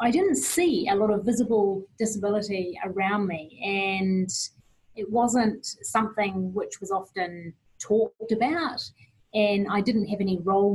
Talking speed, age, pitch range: 140 wpm, 30-49, 175-215 Hz